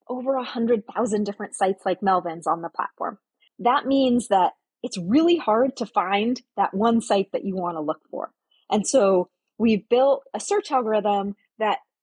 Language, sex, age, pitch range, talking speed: English, female, 30-49, 185-240 Hz, 170 wpm